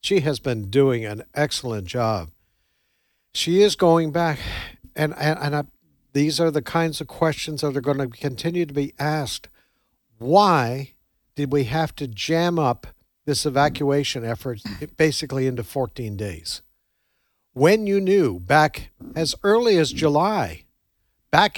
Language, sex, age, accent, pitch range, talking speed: English, male, 60-79, American, 120-155 Hz, 140 wpm